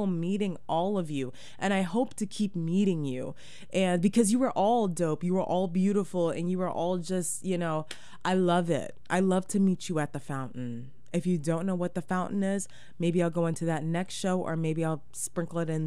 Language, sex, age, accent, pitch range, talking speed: English, female, 20-39, American, 165-200 Hz, 225 wpm